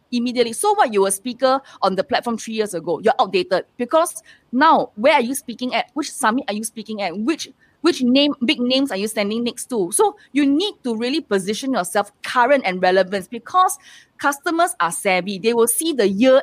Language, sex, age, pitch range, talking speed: English, female, 20-39, 200-300 Hz, 205 wpm